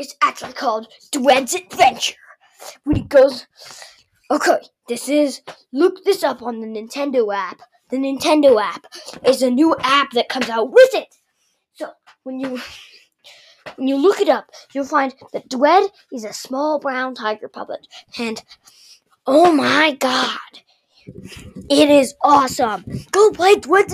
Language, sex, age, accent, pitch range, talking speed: English, female, 10-29, American, 255-365 Hz, 145 wpm